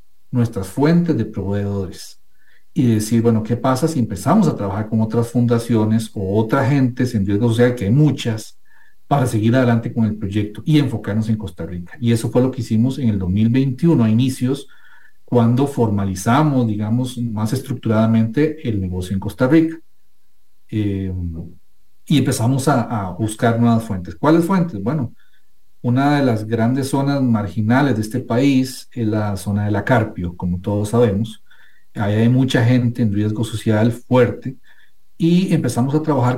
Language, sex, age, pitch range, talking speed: English, male, 50-69, 105-130 Hz, 165 wpm